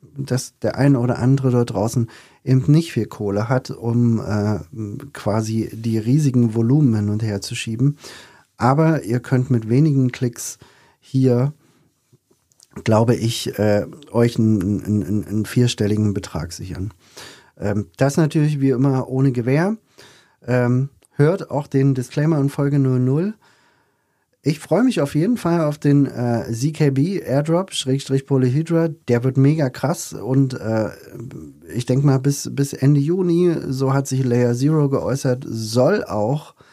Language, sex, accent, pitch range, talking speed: German, male, German, 115-140 Hz, 140 wpm